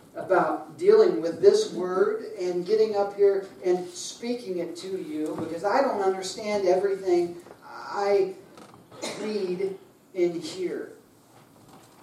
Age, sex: 40-59, male